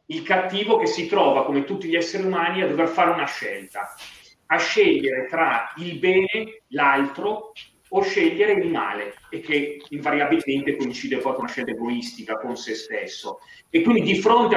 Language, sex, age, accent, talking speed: Italian, male, 30-49, native, 170 wpm